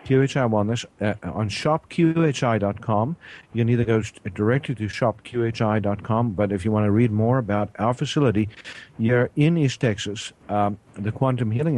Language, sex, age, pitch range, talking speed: English, male, 50-69, 100-120 Hz, 155 wpm